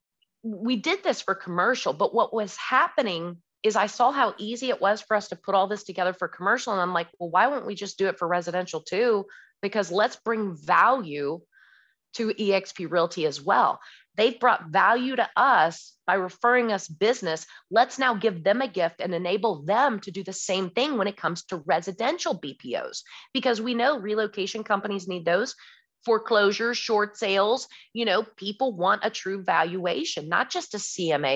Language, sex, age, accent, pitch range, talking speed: English, female, 30-49, American, 185-245 Hz, 190 wpm